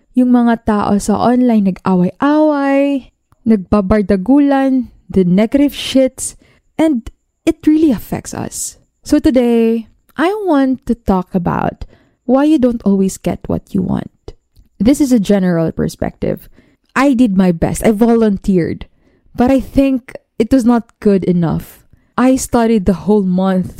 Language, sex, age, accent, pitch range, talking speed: English, female, 20-39, Filipino, 190-260 Hz, 135 wpm